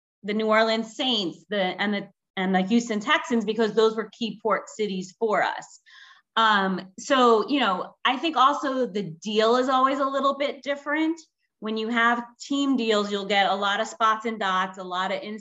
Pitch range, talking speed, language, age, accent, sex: 190-225 Hz, 200 wpm, English, 30-49, American, female